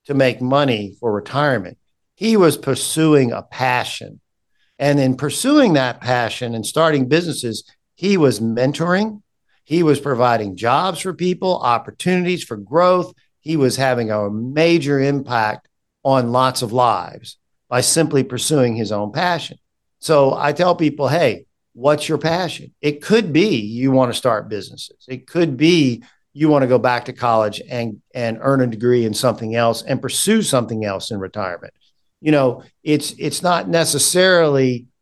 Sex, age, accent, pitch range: male, 50-69, American, 120-150 Hz